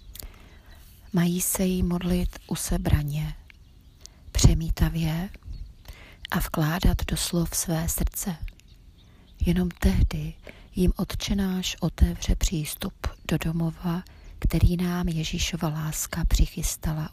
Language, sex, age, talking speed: Czech, female, 30-49, 90 wpm